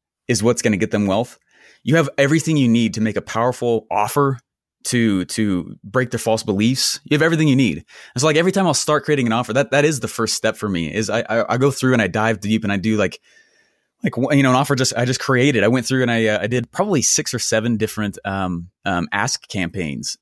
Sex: male